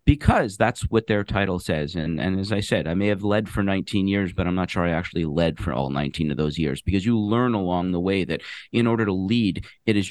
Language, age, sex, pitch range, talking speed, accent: English, 40-59, male, 90-115 Hz, 260 wpm, American